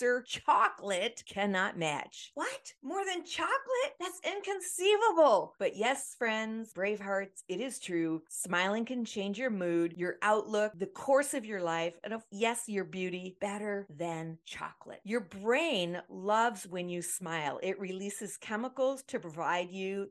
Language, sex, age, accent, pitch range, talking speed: English, female, 40-59, American, 170-230 Hz, 145 wpm